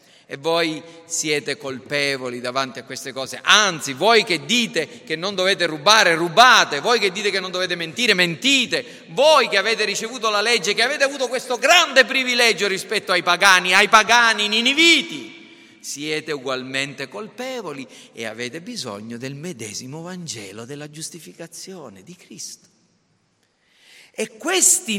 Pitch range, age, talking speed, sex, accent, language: 145-230 Hz, 40-59, 140 wpm, male, native, Italian